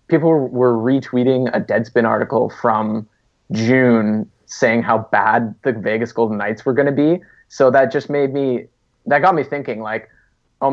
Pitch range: 115-130 Hz